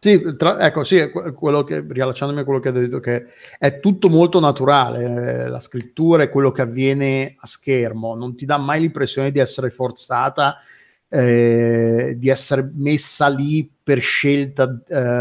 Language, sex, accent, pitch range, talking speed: Italian, male, native, 130-145 Hz, 165 wpm